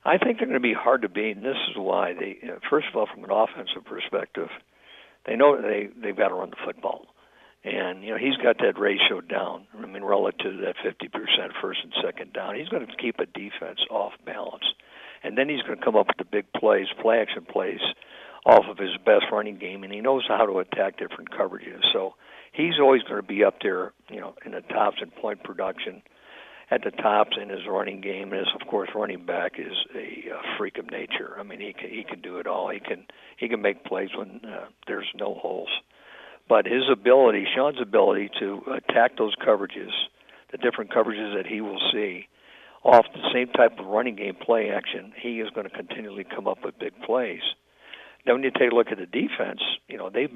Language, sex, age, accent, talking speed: English, male, 60-79, American, 220 wpm